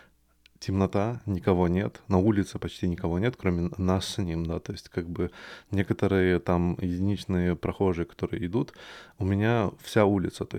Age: 20-39